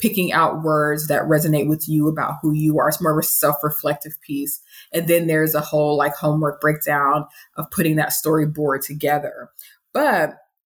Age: 20-39